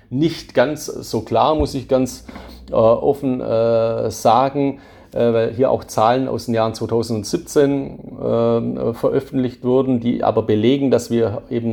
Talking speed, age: 150 wpm, 40-59